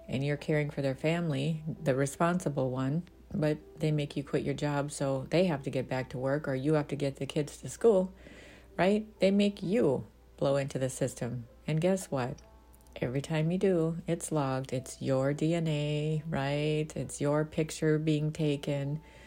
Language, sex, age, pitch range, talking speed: English, female, 50-69, 135-160 Hz, 185 wpm